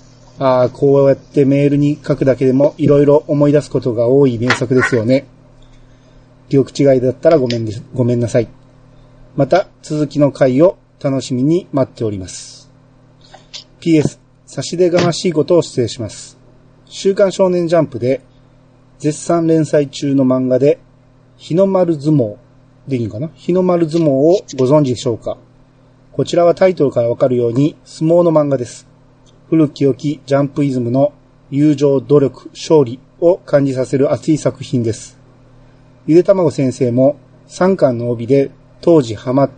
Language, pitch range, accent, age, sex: Japanese, 130-150 Hz, native, 40-59, male